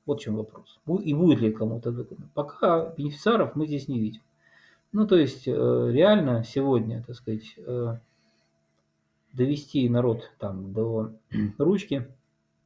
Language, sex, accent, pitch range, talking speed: Russian, male, native, 110-145 Hz, 125 wpm